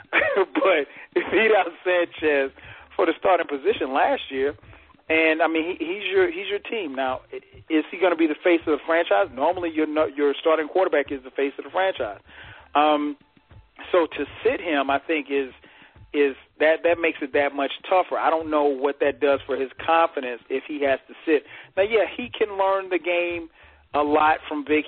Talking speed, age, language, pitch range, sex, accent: 200 wpm, 40-59, English, 140-170 Hz, male, American